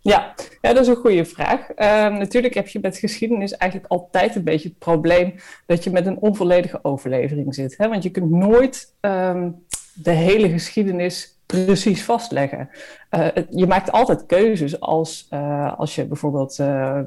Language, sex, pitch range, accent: Dutch, female, 160-195 Hz, Dutch